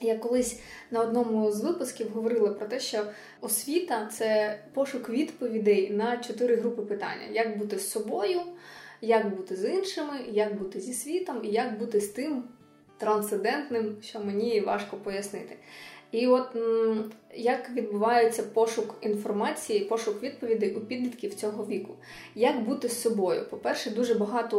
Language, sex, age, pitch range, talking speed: Ukrainian, female, 20-39, 210-240 Hz, 145 wpm